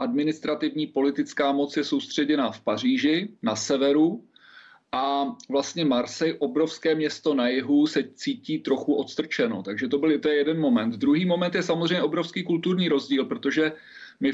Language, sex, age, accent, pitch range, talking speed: Czech, male, 40-59, native, 145-165 Hz, 145 wpm